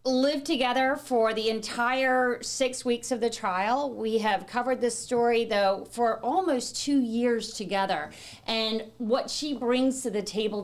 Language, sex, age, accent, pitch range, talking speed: English, female, 40-59, American, 205-250 Hz, 160 wpm